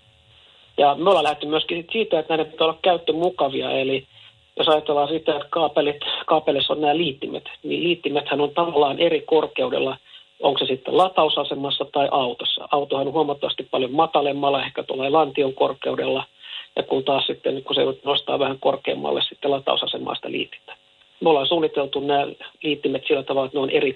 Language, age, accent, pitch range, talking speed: Finnish, 50-69, native, 135-170 Hz, 165 wpm